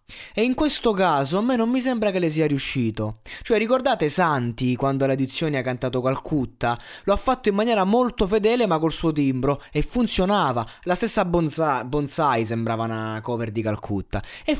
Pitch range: 135-205 Hz